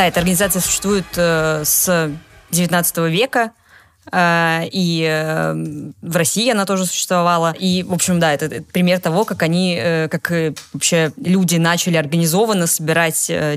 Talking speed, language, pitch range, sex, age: 150 wpm, Russian, 160-185 Hz, female, 20-39